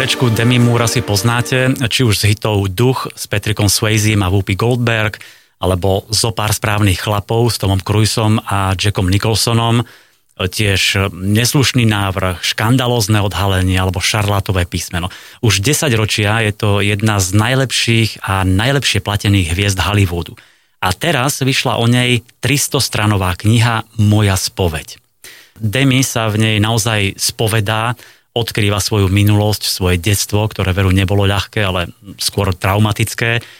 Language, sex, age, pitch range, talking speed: Slovak, male, 30-49, 100-115 Hz, 130 wpm